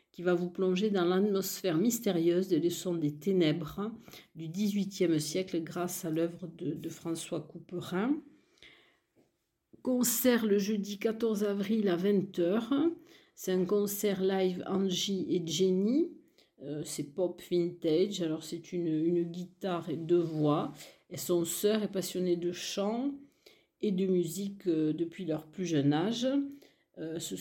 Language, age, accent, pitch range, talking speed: French, 50-69, French, 160-200 Hz, 140 wpm